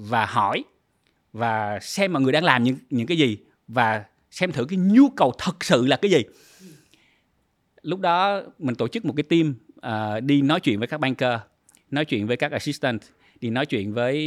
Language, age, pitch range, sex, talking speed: Vietnamese, 20-39, 120-170 Hz, male, 200 wpm